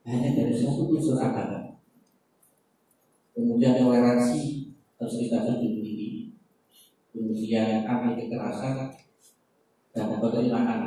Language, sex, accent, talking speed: Indonesian, male, native, 90 wpm